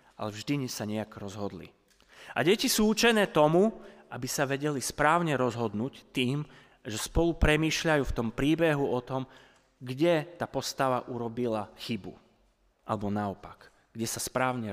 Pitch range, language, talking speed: 115-155 Hz, Slovak, 145 wpm